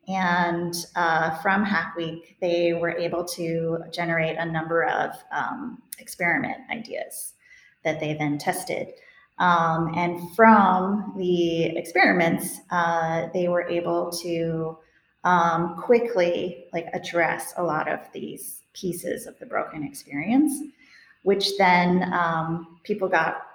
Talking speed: 120 wpm